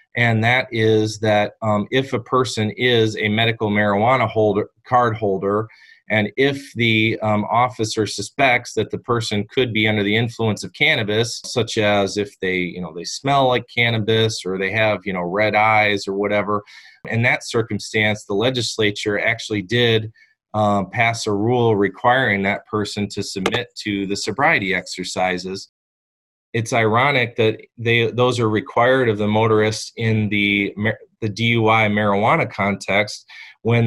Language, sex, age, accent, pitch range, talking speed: English, male, 30-49, American, 100-115 Hz, 150 wpm